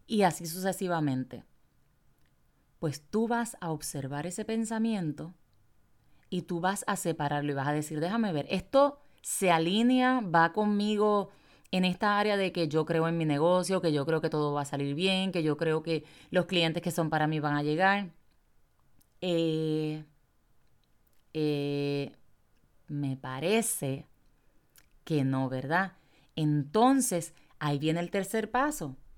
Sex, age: female, 30-49